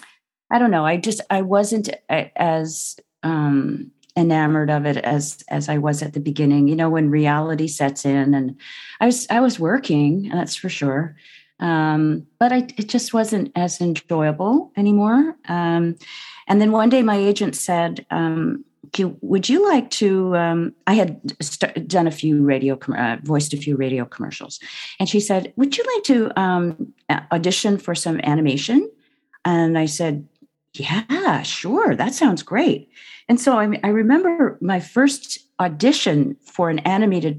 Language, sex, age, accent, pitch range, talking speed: English, female, 40-59, American, 145-205 Hz, 165 wpm